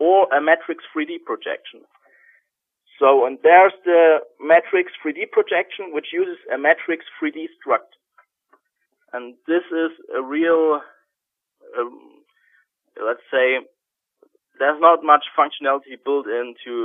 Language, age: English, 30-49